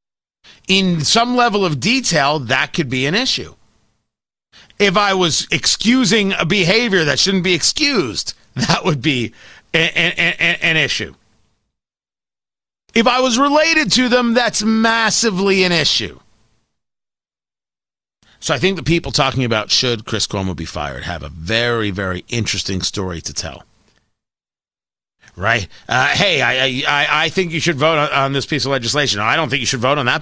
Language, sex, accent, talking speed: English, male, American, 160 wpm